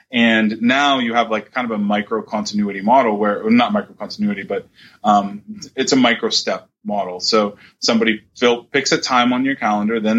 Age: 20-39